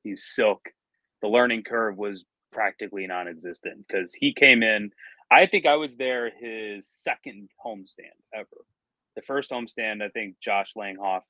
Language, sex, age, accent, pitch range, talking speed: English, male, 30-49, American, 105-135 Hz, 155 wpm